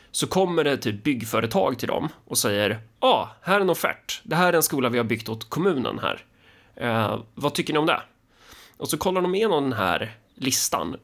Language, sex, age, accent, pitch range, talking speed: Swedish, male, 30-49, native, 115-145 Hz, 220 wpm